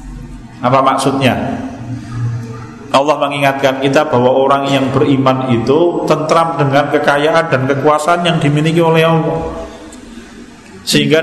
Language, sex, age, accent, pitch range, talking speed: Indonesian, male, 40-59, native, 130-175 Hz, 105 wpm